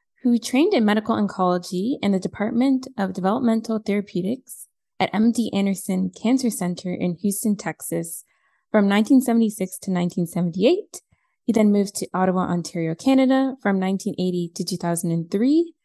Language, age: English, 20-39